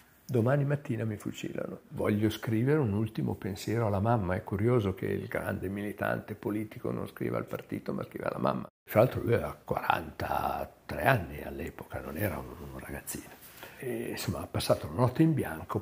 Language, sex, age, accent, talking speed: Italian, male, 60-79, native, 175 wpm